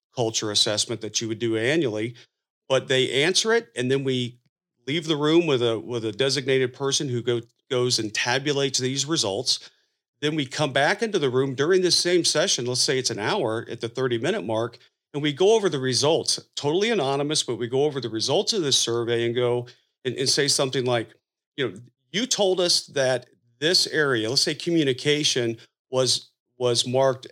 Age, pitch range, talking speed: 40-59, 115-150 Hz, 195 wpm